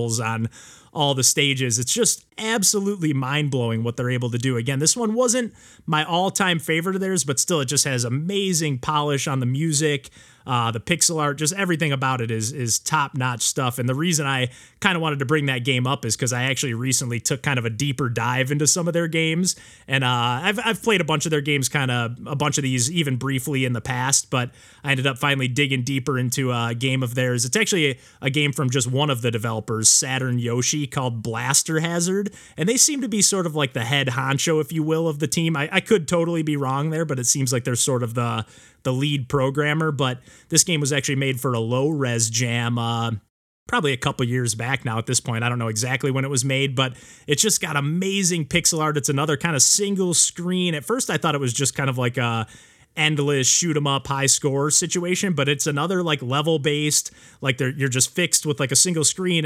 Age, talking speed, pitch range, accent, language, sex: 30-49, 235 wpm, 125-160 Hz, American, English, male